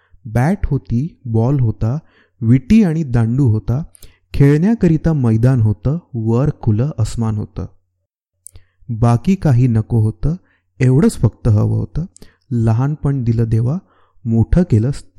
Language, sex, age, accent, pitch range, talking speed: Marathi, male, 30-49, native, 110-145 Hz, 100 wpm